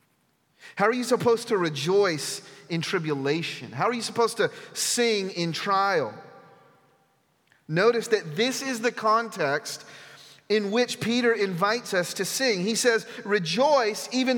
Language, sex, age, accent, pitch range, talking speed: English, male, 40-59, American, 160-225 Hz, 140 wpm